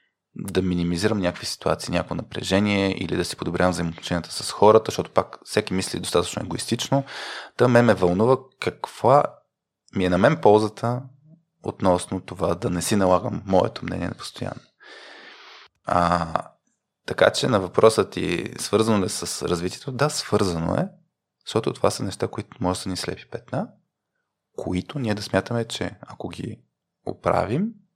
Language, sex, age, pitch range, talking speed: Bulgarian, male, 20-39, 90-120 Hz, 150 wpm